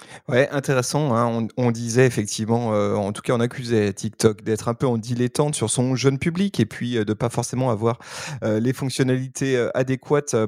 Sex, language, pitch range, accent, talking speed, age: male, French, 120-160 Hz, French, 200 wpm, 30-49